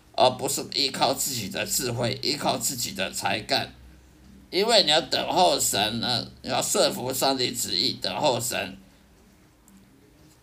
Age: 50-69